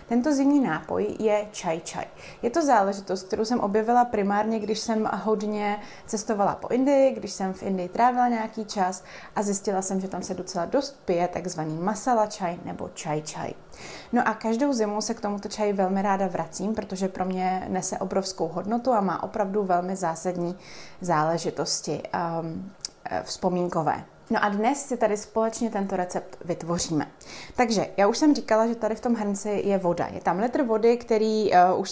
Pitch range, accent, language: 185-225 Hz, native, Czech